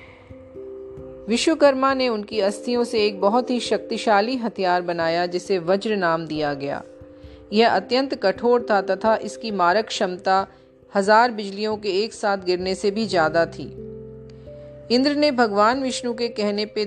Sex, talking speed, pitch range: female, 145 wpm, 180-220 Hz